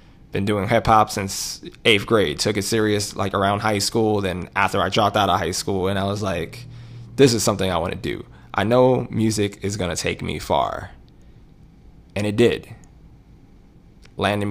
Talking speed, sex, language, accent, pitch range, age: 180 wpm, male, English, American, 95-115 Hz, 20-39